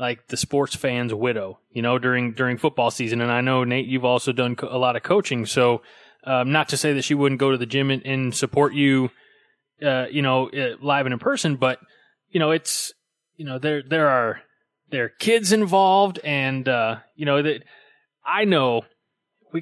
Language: English